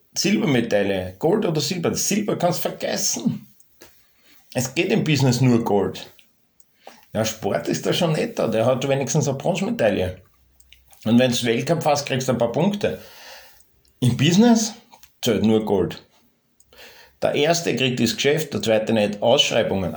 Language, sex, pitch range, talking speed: German, male, 110-140 Hz, 155 wpm